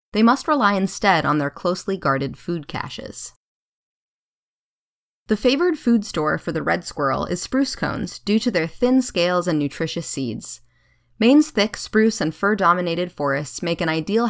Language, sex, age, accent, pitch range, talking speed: English, female, 20-39, American, 150-220 Hz, 165 wpm